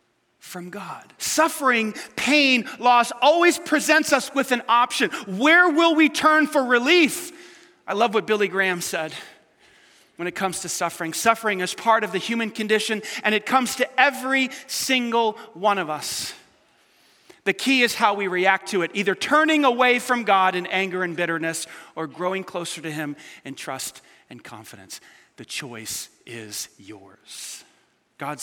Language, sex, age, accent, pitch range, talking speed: English, male, 40-59, American, 190-275 Hz, 160 wpm